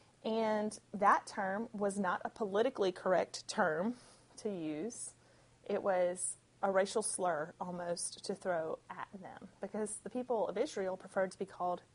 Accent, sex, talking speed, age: American, female, 150 wpm, 30-49